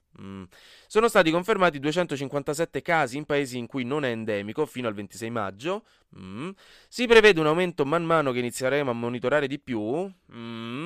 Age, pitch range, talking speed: 20-39, 115-175 Hz, 170 wpm